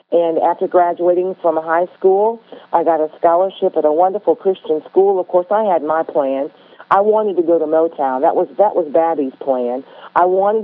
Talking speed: 195 wpm